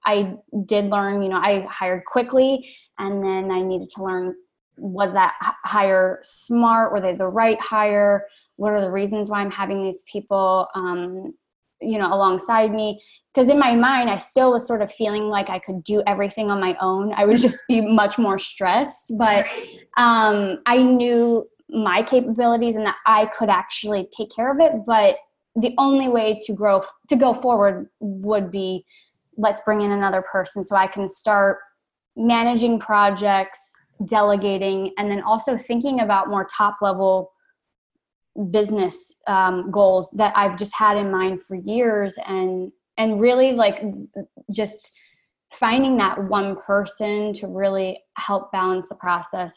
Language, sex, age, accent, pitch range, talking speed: English, female, 10-29, American, 195-230 Hz, 160 wpm